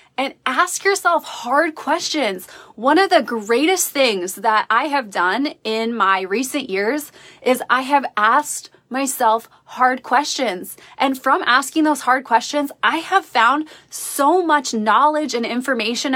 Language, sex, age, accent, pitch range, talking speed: English, female, 20-39, American, 240-300 Hz, 145 wpm